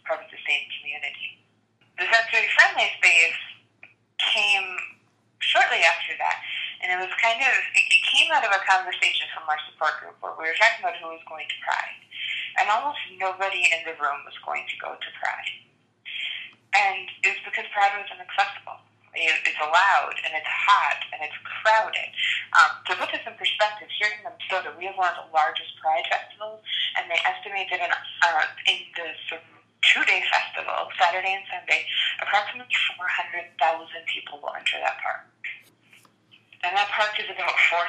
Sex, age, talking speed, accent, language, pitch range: female, 20-39, 170 wpm, American, English, 170-220 Hz